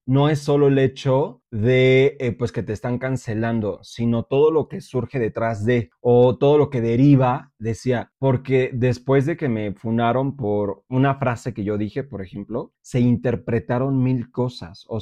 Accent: Mexican